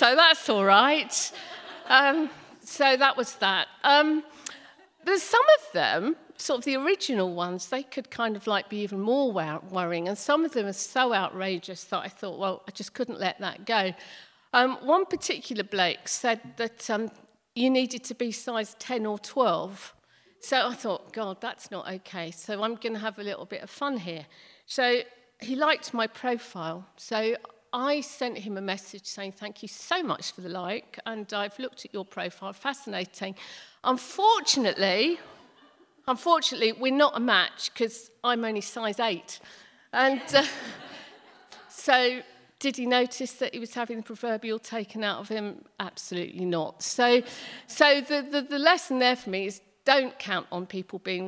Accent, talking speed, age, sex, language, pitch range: British, 175 wpm, 50-69, female, English, 195-270 Hz